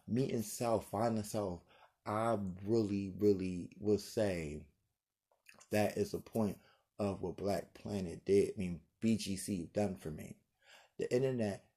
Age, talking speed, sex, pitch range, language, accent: 30-49, 135 wpm, male, 100-125 Hz, English, American